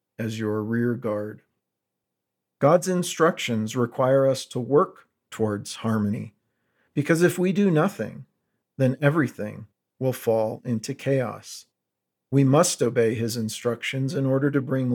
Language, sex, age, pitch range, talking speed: English, male, 50-69, 115-145 Hz, 130 wpm